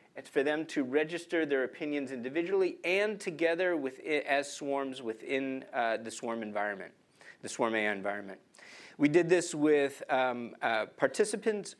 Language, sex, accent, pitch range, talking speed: English, male, American, 120-165 Hz, 145 wpm